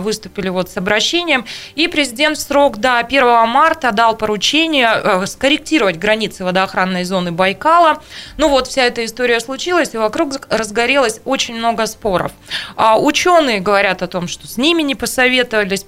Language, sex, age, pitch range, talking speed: Russian, female, 20-39, 190-240 Hz, 155 wpm